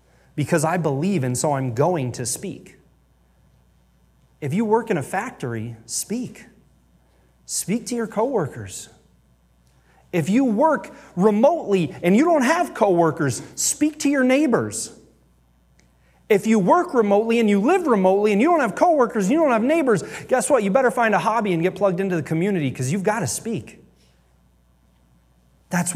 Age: 30-49